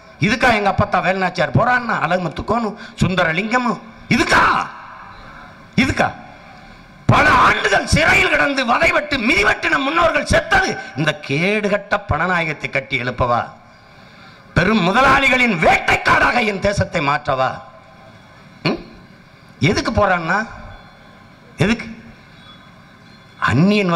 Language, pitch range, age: English, 155-250 Hz, 50-69